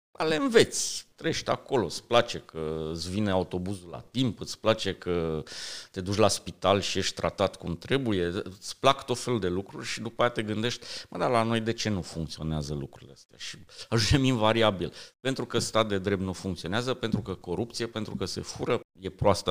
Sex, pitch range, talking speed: male, 90-115 Hz, 195 wpm